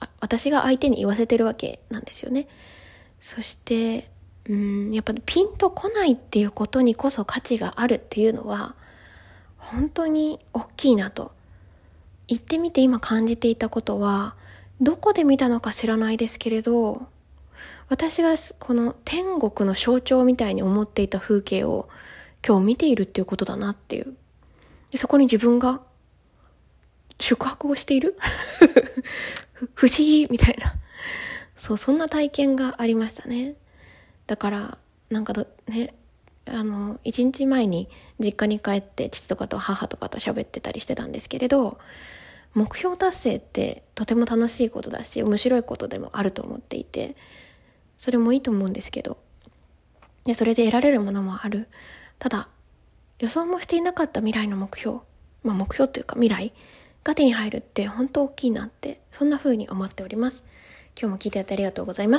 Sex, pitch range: female, 210-270 Hz